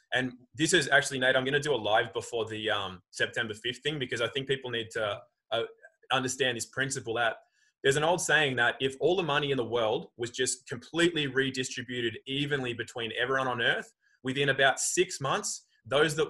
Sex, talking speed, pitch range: male, 205 wpm, 115-140 Hz